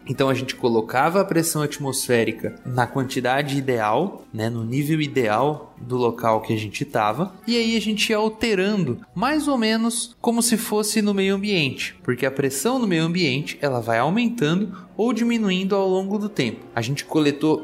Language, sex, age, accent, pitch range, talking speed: Portuguese, male, 20-39, Brazilian, 130-195 Hz, 175 wpm